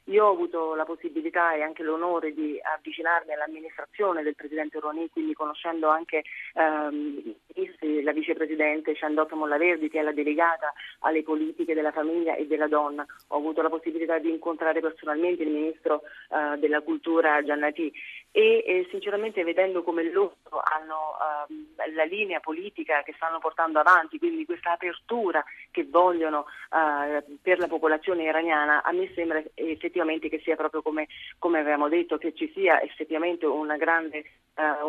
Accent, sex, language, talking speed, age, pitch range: native, female, Italian, 155 wpm, 30-49, 155-170 Hz